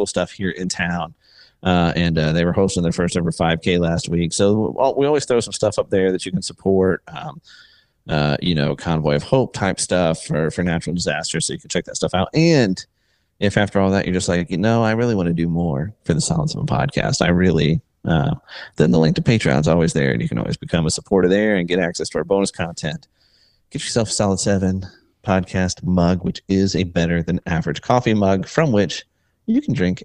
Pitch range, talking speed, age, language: 90-145 Hz, 230 wpm, 30-49, English